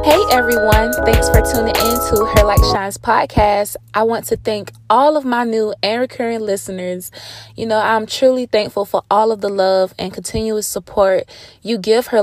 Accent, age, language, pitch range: American, 20-39, English, 190-230 Hz